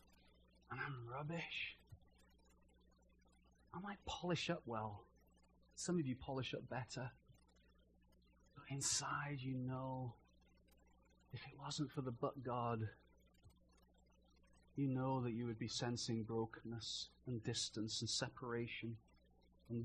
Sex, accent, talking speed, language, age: male, British, 115 wpm, English, 30-49